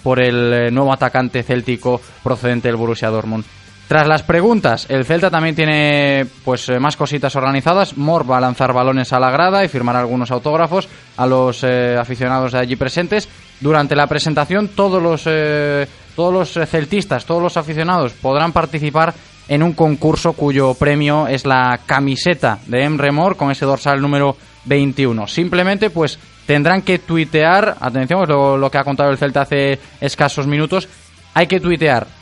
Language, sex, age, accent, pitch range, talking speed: Spanish, male, 20-39, Spanish, 130-160 Hz, 165 wpm